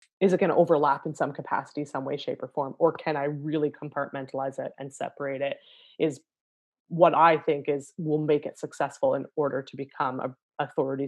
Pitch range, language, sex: 145-170 Hz, English, female